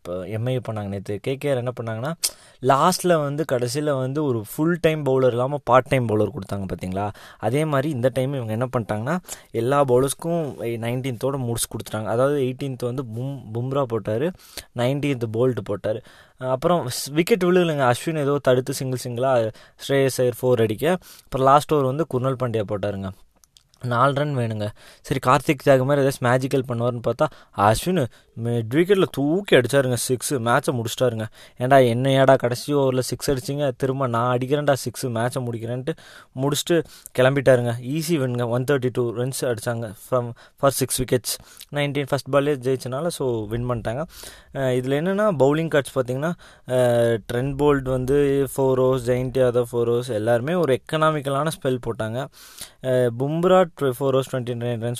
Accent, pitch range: native, 115-140 Hz